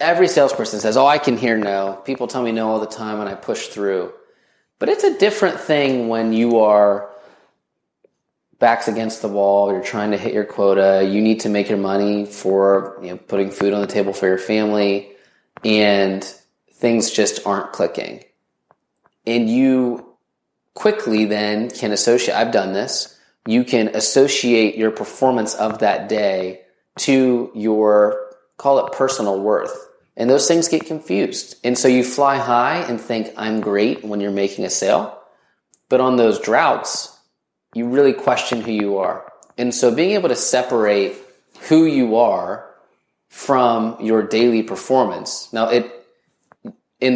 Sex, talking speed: male, 160 wpm